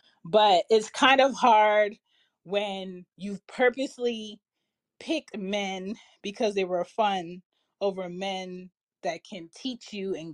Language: English